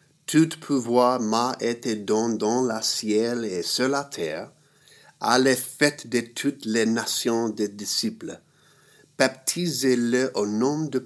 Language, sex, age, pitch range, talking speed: English, male, 50-69, 110-150 Hz, 130 wpm